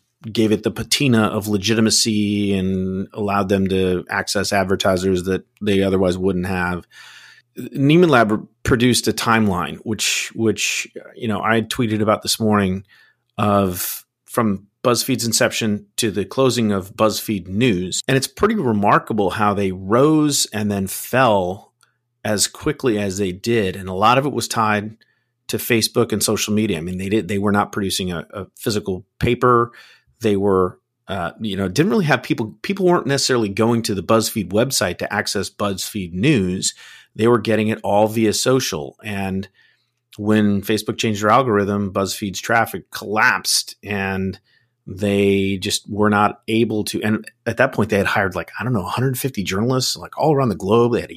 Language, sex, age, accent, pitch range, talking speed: English, male, 40-59, American, 100-115 Hz, 170 wpm